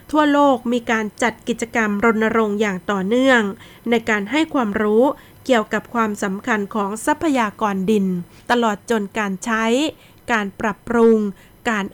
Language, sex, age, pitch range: Thai, female, 20-39, 205-240 Hz